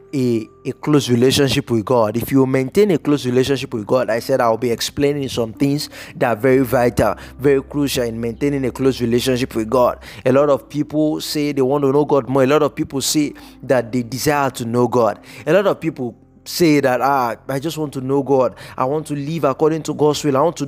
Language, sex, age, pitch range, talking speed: English, male, 20-39, 130-155 Hz, 230 wpm